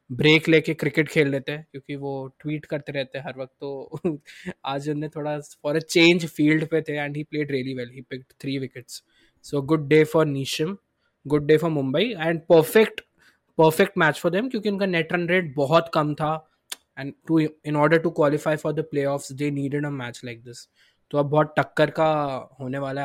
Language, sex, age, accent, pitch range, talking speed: Hindi, male, 20-39, native, 140-165 Hz, 140 wpm